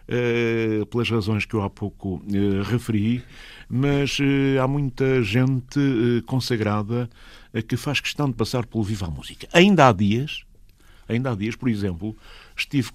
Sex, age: male, 50-69